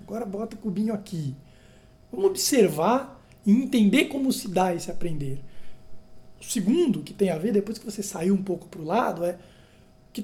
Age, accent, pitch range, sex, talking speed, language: 20-39, Brazilian, 160-225 Hz, male, 180 wpm, Portuguese